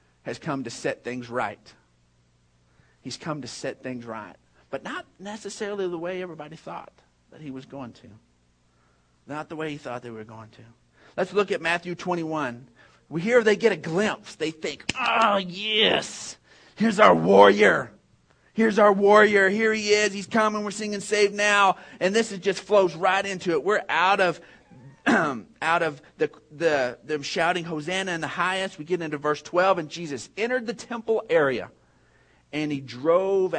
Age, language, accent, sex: 40-59, English, American, male